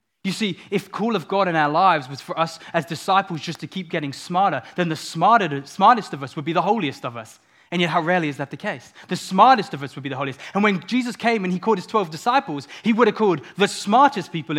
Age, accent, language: 20-39, British, English